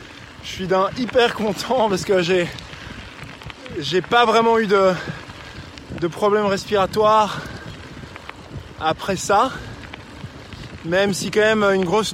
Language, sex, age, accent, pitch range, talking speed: French, male, 20-39, French, 175-210 Hz, 115 wpm